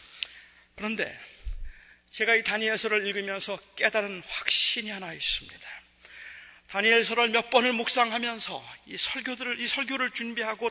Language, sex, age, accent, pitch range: Korean, male, 40-59, native, 200-255 Hz